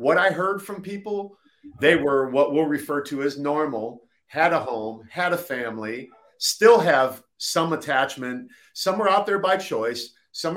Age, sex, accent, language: 40-59, male, American, English